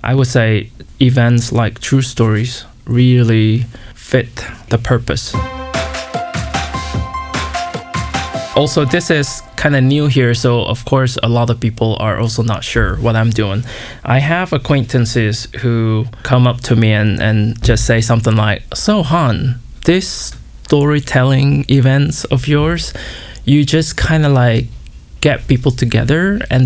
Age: 20-39